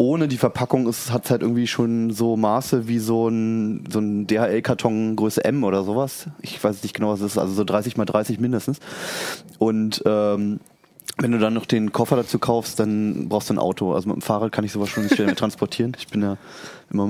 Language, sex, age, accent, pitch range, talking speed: German, male, 20-39, German, 105-120 Hz, 220 wpm